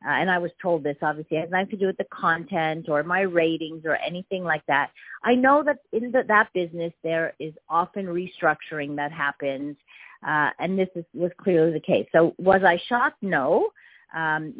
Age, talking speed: 40-59, 195 wpm